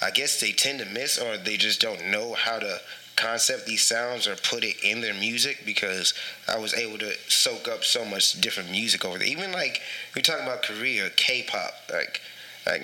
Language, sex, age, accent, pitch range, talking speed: English, male, 20-39, American, 110-130 Hz, 205 wpm